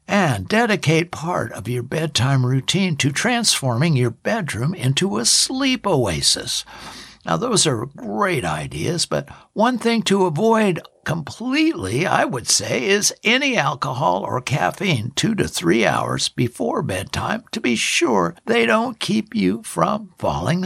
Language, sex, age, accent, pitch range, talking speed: English, male, 60-79, American, 125-200 Hz, 140 wpm